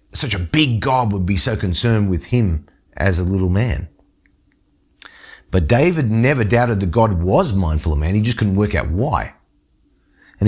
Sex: male